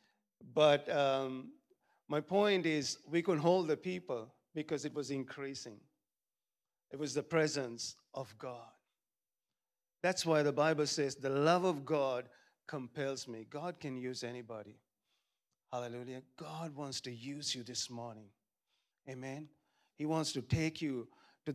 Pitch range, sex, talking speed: 135-165 Hz, male, 140 wpm